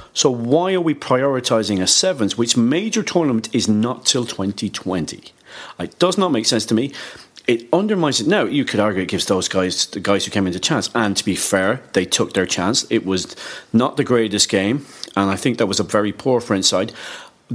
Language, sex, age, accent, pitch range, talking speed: English, male, 40-59, British, 110-175 Hz, 215 wpm